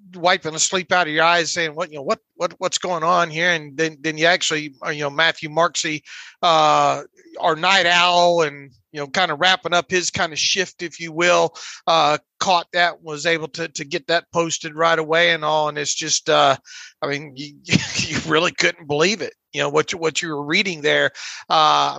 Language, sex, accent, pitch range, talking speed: English, male, American, 160-180 Hz, 220 wpm